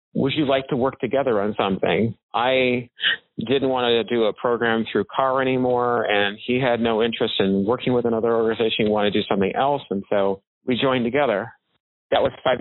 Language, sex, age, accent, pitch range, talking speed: English, male, 40-59, American, 110-135 Hz, 200 wpm